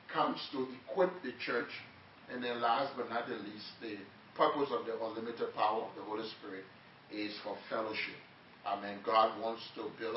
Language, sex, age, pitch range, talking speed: English, male, 40-59, 115-150 Hz, 170 wpm